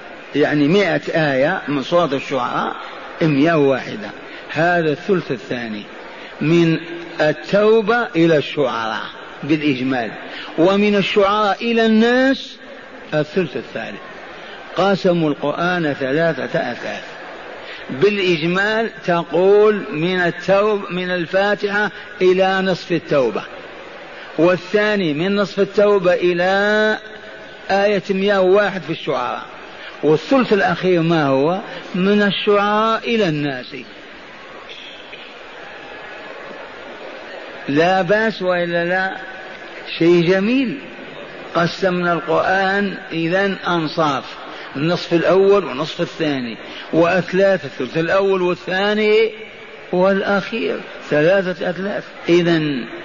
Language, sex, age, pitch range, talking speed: Arabic, male, 50-69, 165-205 Hz, 85 wpm